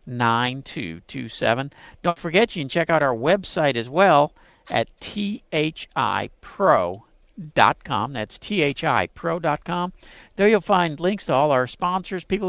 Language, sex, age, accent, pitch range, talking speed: English, male, 50-69, American, 125-170 Hz, 115 wpm